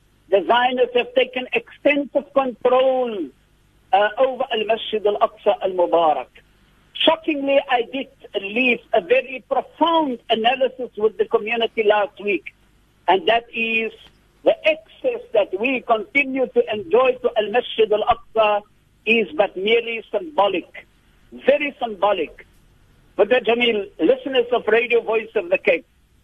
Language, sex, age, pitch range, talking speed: English, male, 60-79, 225-265 Hz, 120 wpm